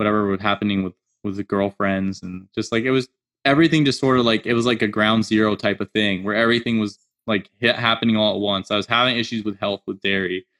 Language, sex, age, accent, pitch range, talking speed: English, male, 20-39, American, 100-120 Hz, 245 wpm